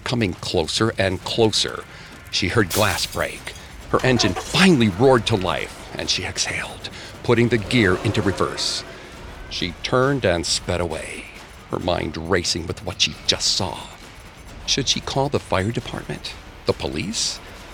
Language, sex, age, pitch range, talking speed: English, male, 50-69, 90-125 Hz, 145 wpm